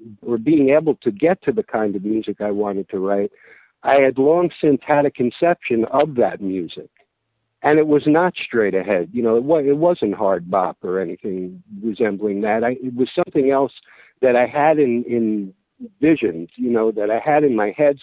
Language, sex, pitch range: English, male, 105-135 Hz